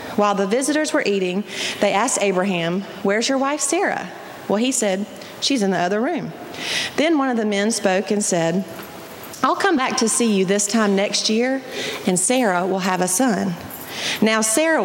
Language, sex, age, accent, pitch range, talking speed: English, female, 40-59, American, 185-245 Hz, 185 wpm